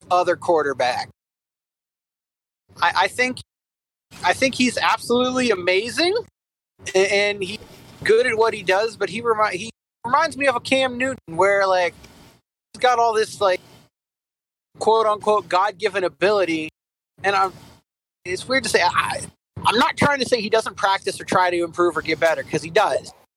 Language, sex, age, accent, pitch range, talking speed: English, male, 30-49, American, 180-225 Hz, 165 wpm